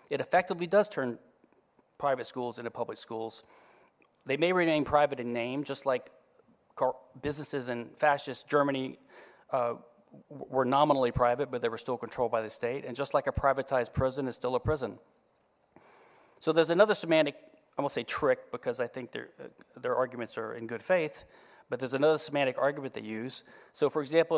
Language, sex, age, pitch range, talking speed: English, male, 40-59, 125-160 Hz, 175 wpm